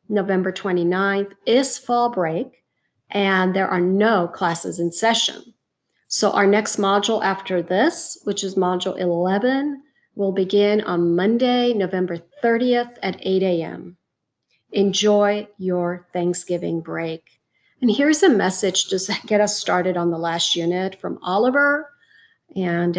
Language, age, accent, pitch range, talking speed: English, 40-59, American, 175-225 Hz, 130 wpm